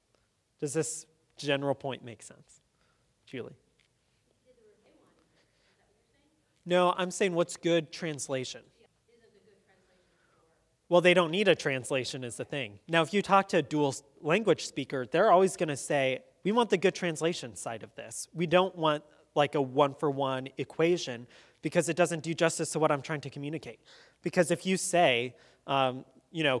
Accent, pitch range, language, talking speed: American, 140-175 Hz, English, 155 wpm